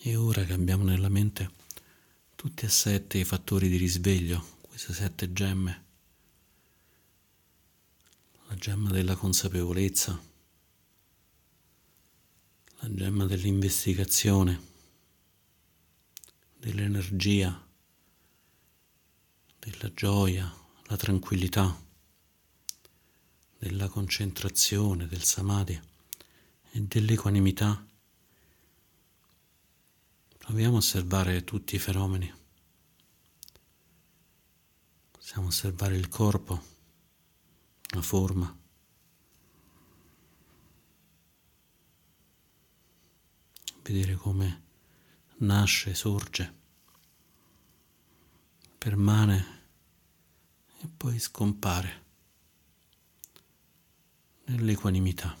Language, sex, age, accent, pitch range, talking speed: Italian, male, 50-69, native, 85-100 Hz, 55 wpm